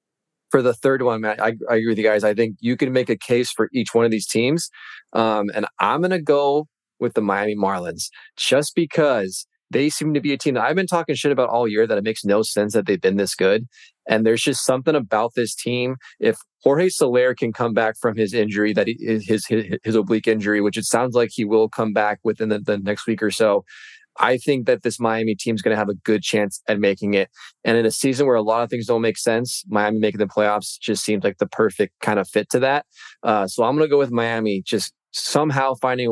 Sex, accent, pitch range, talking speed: male, American, 105-130 Hz, 255 wpm